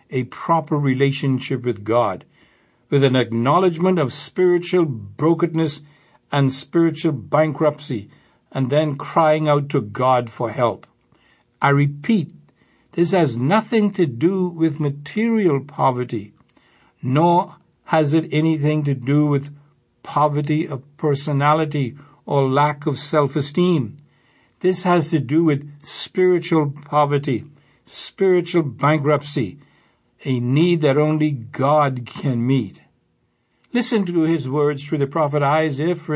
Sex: male